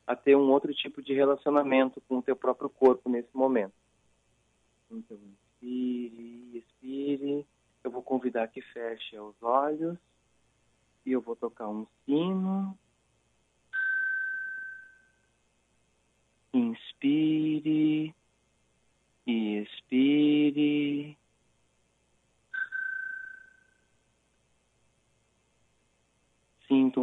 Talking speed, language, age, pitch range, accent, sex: 75 wpm, Portuguese, 40-59, 120-150 Hz, Brazilian, male